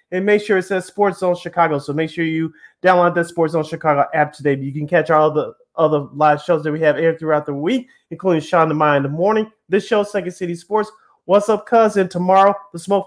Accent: American